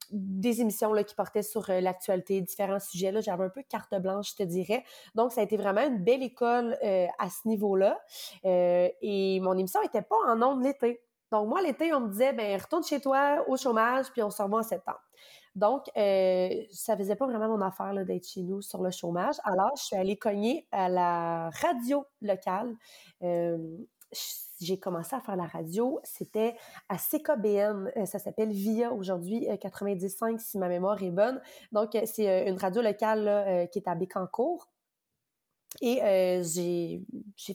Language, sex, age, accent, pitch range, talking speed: French, female, 30-49, Canadian, 195-245 Hz, 190 wpm